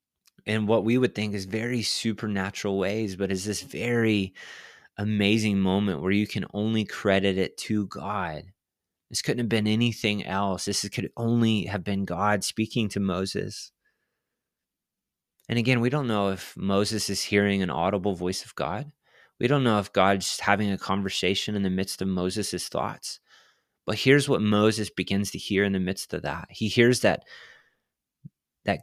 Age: 20-39